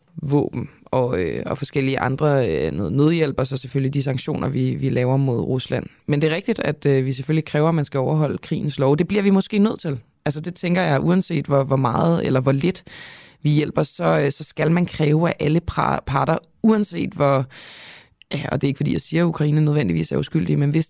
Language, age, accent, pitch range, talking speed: Danish, 20-39, native, 140-175 Hz, 225 wpm